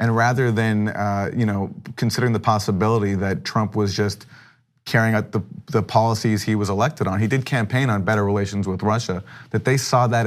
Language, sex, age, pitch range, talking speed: English, male, 30-49, 105-125 Hz, 195 wpm